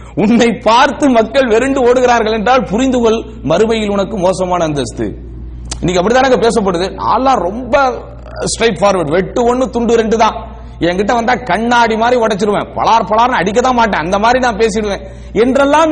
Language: English